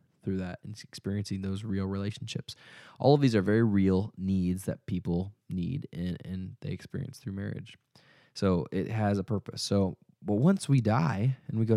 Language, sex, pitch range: English, male, 100-130 Hz